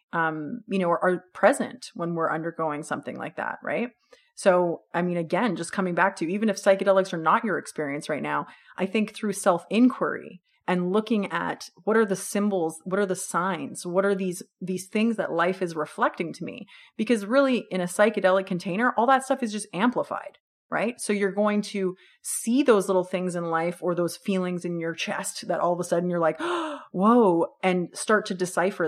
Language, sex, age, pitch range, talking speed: English, female, 30-49, 170-215 Hz, 205 wpm